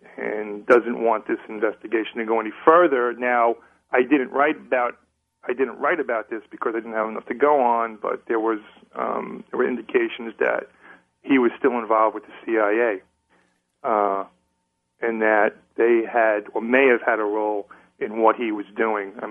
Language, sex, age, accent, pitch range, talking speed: English, male, 40-59, American, 100-130 Hz, 180 wpm